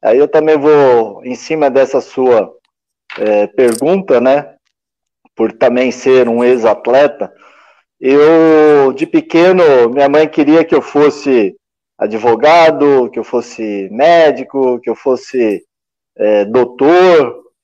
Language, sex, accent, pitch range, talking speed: Portuguese, male, Brazilian, 135-195 Hz, 110 wpm